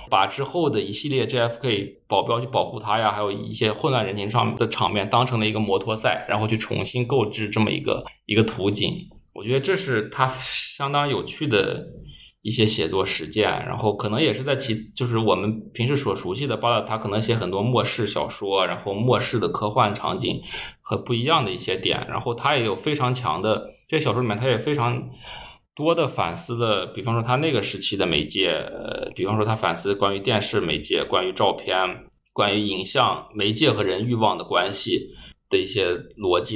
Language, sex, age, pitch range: Chinese, male, 20-39, 105-130 Hz